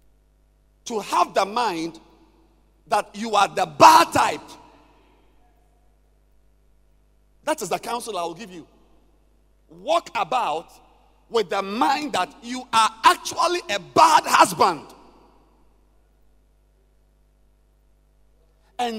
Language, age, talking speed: English, 50-69, 100 wpm